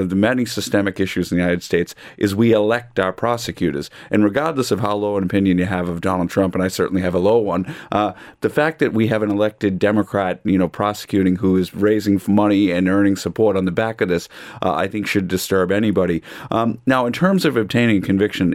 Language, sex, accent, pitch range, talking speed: English, male, American, 90-105 Hz, 225 wpm